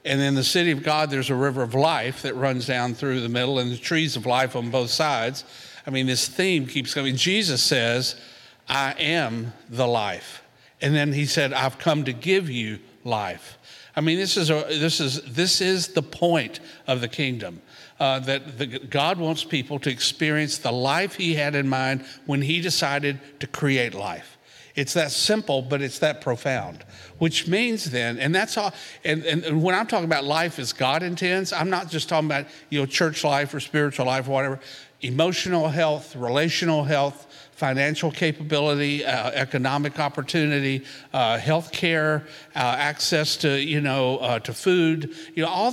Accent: American